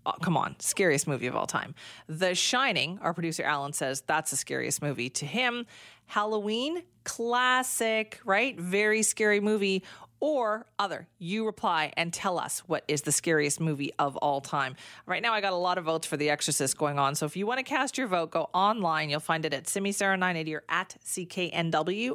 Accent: American